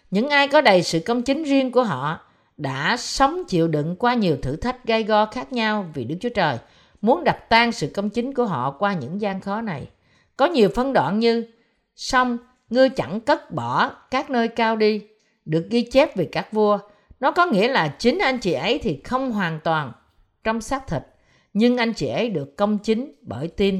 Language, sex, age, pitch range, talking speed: Vietnamese, female, 50-69, 180-255 Hz, 210 wpm